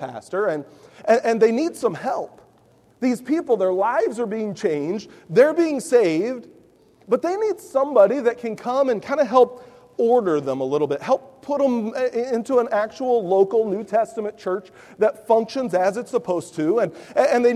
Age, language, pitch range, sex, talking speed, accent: 40-59, English, 210-275 Hz, male, 180 wpm, American